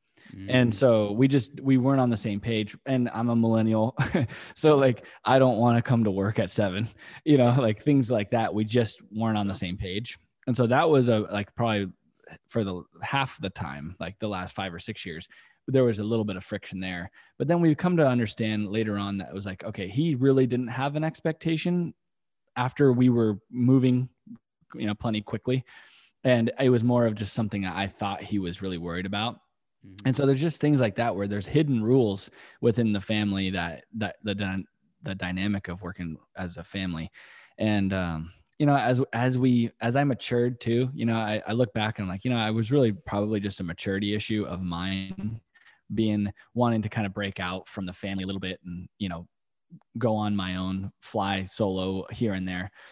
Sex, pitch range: male, 95-125 Hz